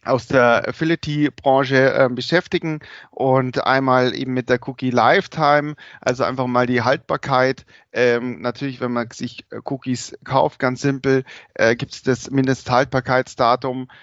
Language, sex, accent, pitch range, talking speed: German, male, German, 120-140 Hz, 120 wpm